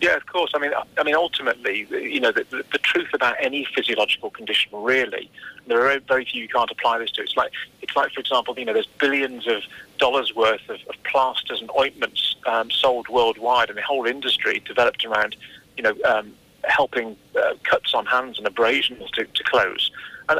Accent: British